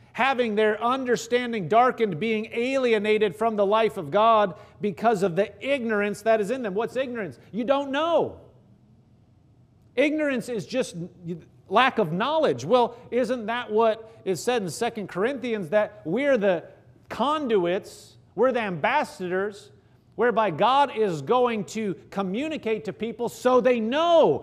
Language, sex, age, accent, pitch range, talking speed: English, male, 40-59, American, 205-260 Hz, 140 wpm